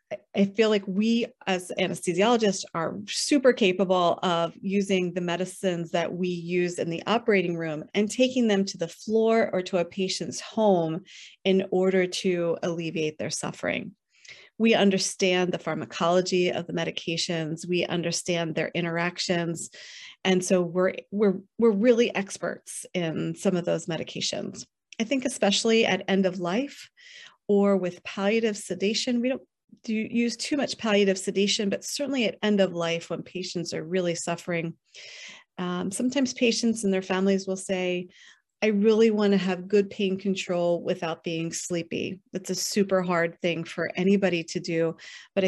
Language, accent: English, American